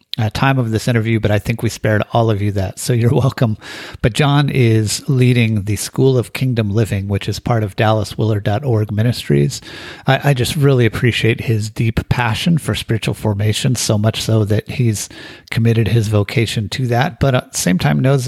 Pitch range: 105-125 Hz